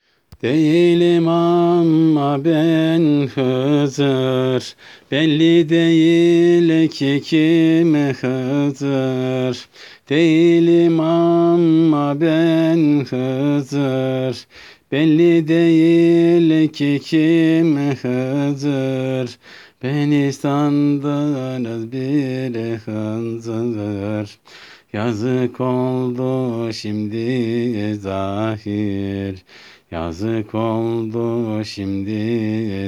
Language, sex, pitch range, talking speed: Turkish, male, 110-145 Hz, 55 wpm